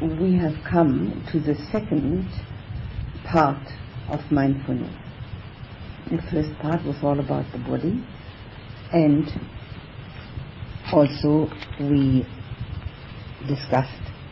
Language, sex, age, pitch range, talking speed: English, female, 60-79, 115-145 Hz, 90 wpm